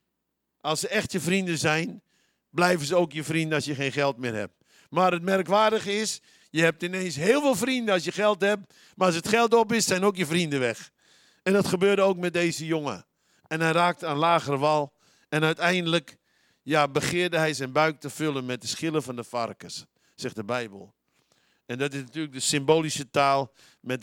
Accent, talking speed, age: Dutch, 200 wpm, 50-69